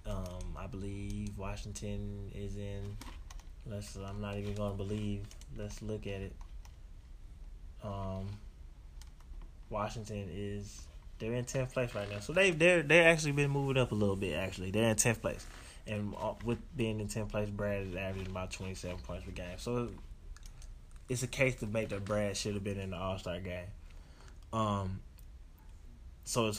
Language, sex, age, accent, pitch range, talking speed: English, male, 20-39, American, 90-110 Hz, 170 wpm